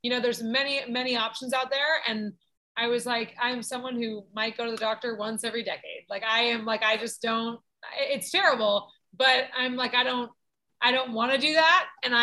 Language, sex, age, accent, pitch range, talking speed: English, female, 20-39, American, 225-265 Hz, 215 wpm